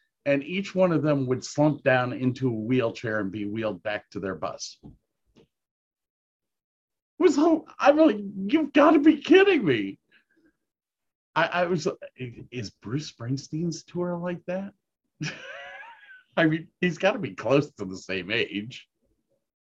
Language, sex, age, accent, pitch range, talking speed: English, male, 50-69, American, 125-185 Hz, 145 wpm